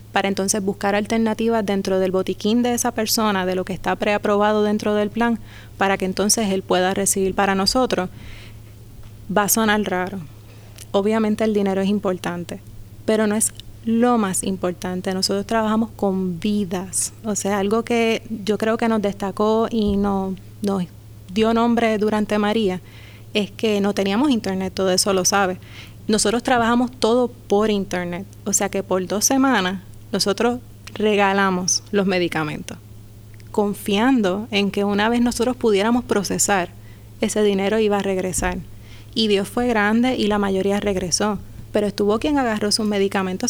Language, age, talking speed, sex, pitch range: Spanish, 20-39, 155 wpm, female, 185-220 Hz